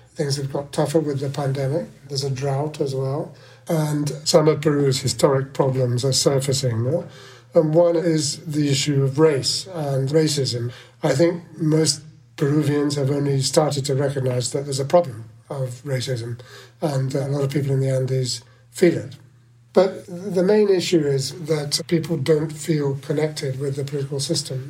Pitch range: 135-160 Hz